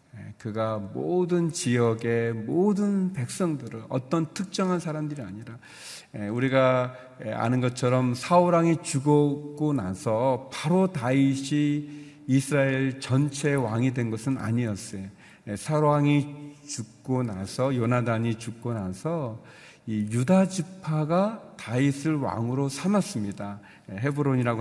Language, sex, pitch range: Korean, male, 110-155 Hz